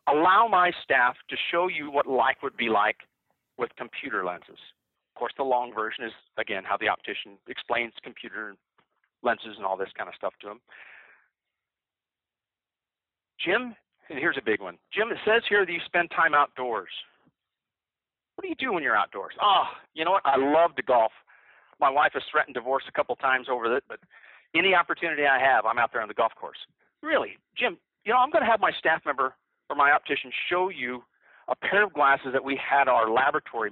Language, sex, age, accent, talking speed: English, male, 40-59, American, 200 wpm